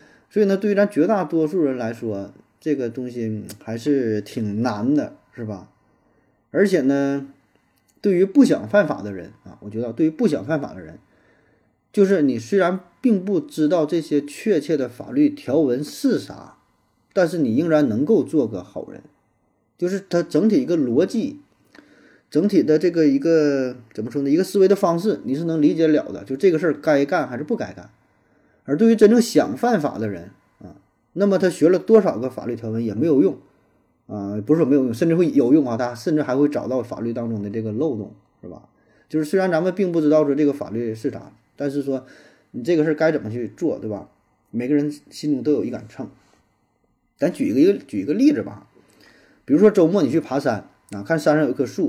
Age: 20-39